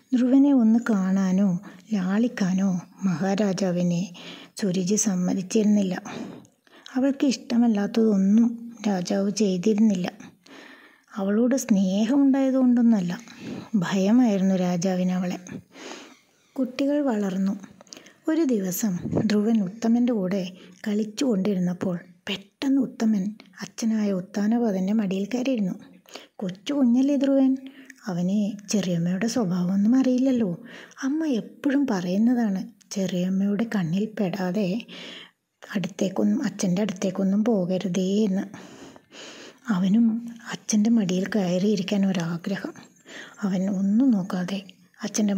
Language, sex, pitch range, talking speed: Malayalam, female, 190-235 Hz, 75 wpm